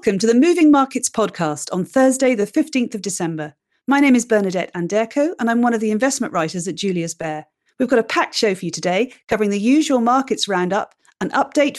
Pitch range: 190-260 Hz